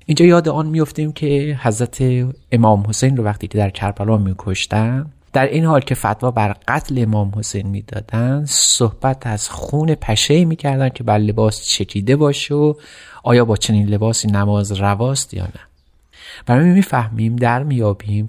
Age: 30-49